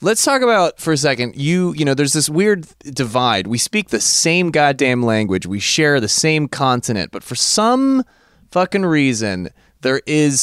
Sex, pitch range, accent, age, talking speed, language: male, 110-155 Hz, American, 20-39, 180 wpm, English